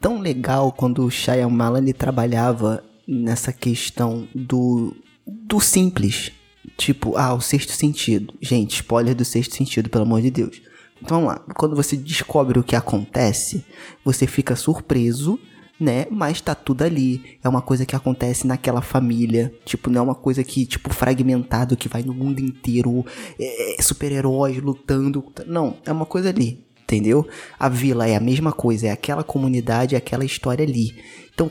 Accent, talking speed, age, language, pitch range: Brazilian, 165 wpm, 20-39, Portuguese, 120-150 Hz